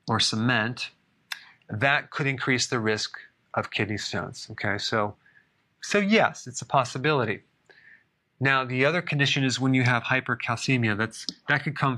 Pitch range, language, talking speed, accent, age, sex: 115-140 Hz, English, 150 wpm, American, 30-49, male